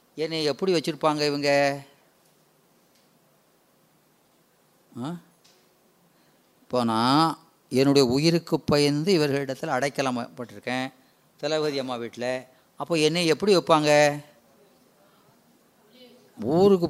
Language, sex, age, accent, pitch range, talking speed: Tamil, female, 30-49, native, 140-190 Hz, 70 wpm